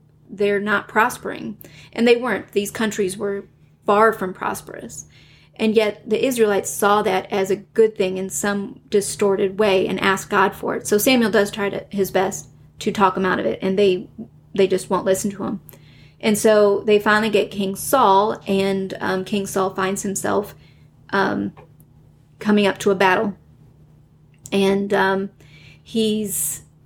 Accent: American